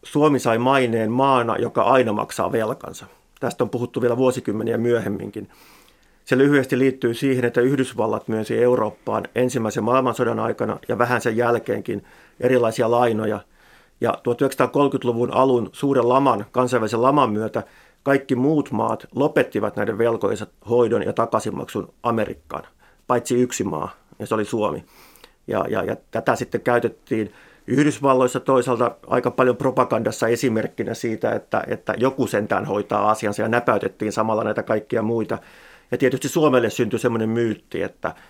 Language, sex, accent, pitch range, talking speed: Finnish, male, native, 110-130 Hz, 140 wpm